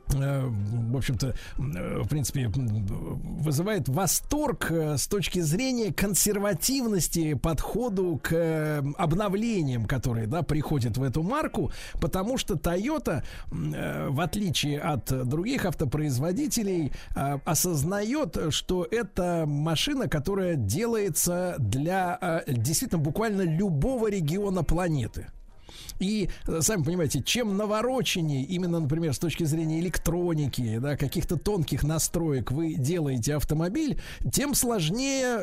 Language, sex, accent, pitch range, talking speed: Russian, male, native, 145-195 Hz, 100 wpm